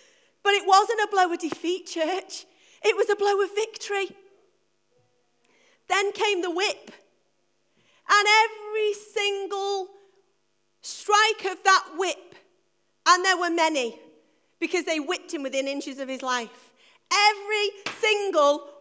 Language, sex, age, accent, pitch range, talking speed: English, female, 40-59, British, 285-390 Hz, 130 wpm